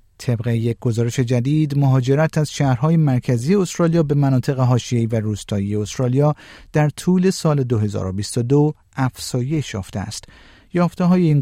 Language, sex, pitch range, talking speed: Persian, male, 110-150 Hz, 130 wpm